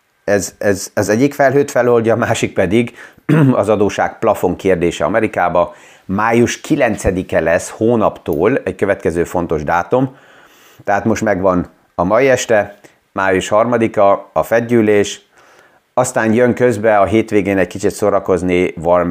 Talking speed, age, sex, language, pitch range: 130 wpm, 30-49, male, Hungarian, 85-110 Hz